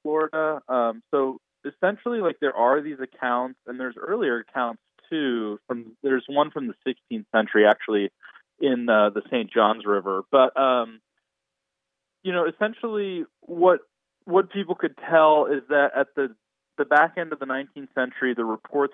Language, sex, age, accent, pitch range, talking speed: English, male, 30-49, American, 105-140 Hz, 160 wpm